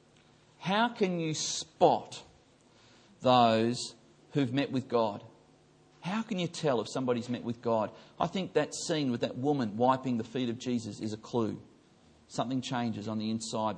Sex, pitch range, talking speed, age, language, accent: male, 125-170 Hz, 165 wpm, 40-59, English, Australian